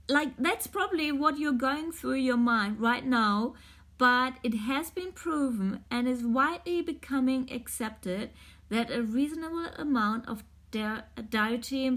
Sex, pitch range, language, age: female, 185-250 Hz, English, 30-49